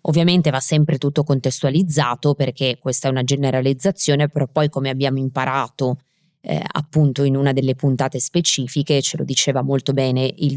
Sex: female